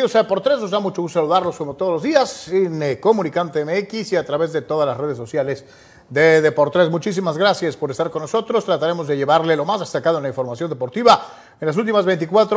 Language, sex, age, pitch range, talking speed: Spanish, male, 40-59, 140-175 Hz, 225 wpm